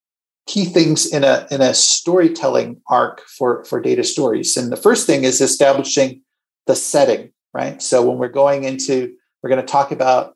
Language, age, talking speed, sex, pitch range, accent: English, 40-59, 180 wpm, male, 135-170 Hz, American